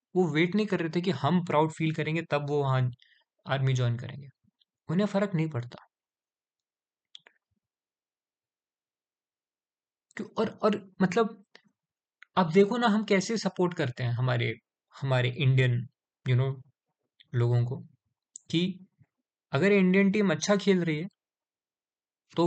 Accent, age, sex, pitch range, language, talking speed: native, 20-39, male, 130-180 Hz, Hindi, 130 wpm